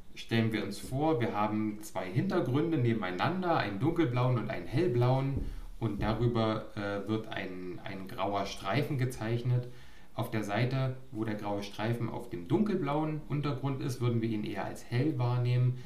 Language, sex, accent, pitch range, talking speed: German, male, German, 100-125 Hz, 160 wpm